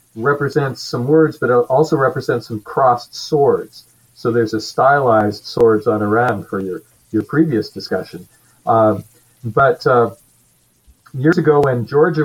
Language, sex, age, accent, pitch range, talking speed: English, male, 50-69, American, 115-145 Hz, 140 wpm